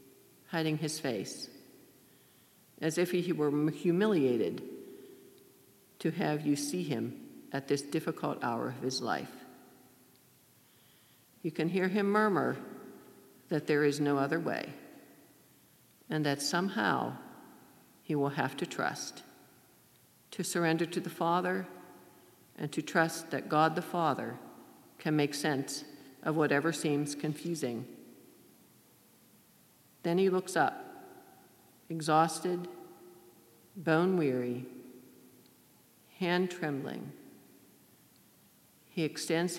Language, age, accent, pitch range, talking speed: English, 50-69, American, 140-180 Hz, 100 wpm